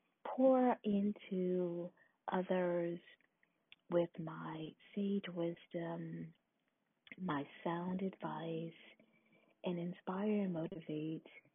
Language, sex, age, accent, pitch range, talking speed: English, female, 40-59, American, 160-205 Hz, 75 wpm